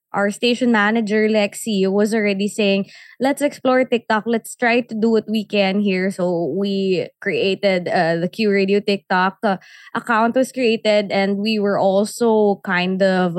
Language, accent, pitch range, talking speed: English, Filipino, 195-230 Hz, 160 wpm